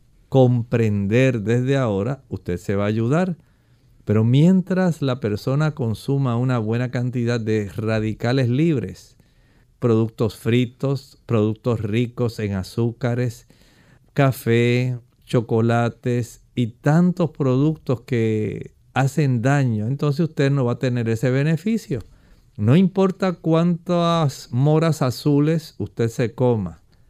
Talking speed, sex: 110 wpm, male